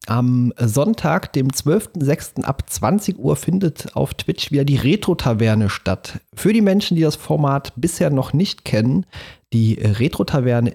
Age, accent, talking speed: 30-49, German, 145 wpm